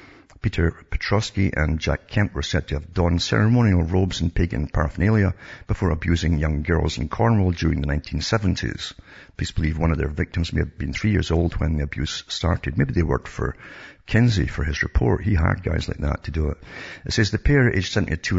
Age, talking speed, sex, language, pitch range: 60-79, 200 wpm, male, English, 80-100 Hz